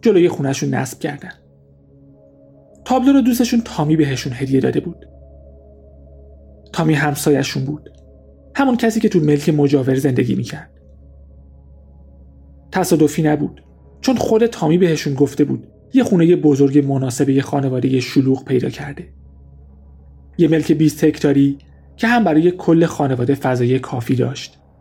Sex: male